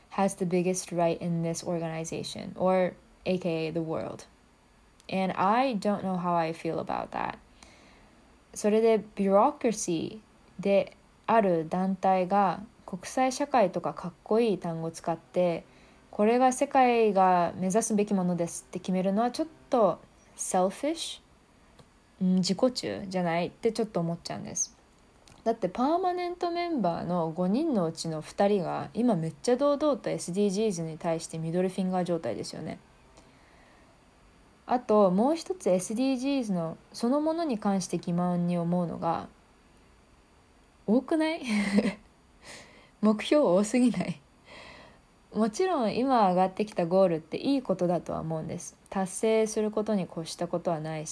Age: 20-39